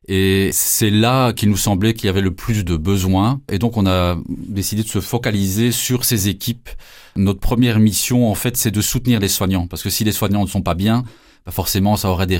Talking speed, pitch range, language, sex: 225 wpm, 95-110 Hz, French, male